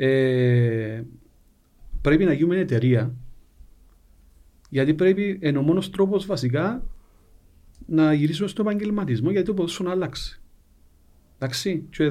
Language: Greek